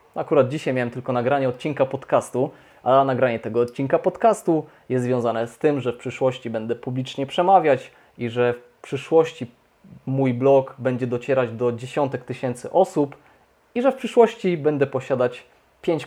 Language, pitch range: Polish, 125-155 Hz